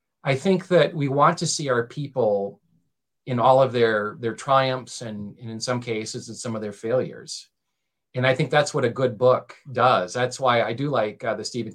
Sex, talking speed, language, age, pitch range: male, 215 wpm, English, 40-59, 115-135 Hz